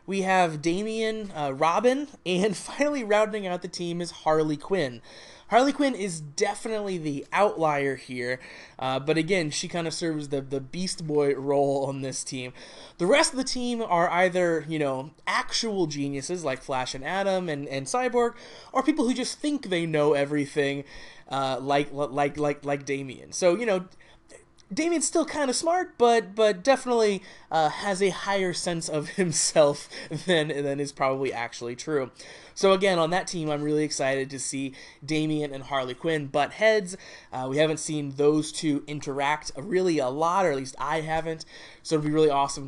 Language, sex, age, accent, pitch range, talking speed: English, male, 20-39, American, 140-195 Hz, 180 wpm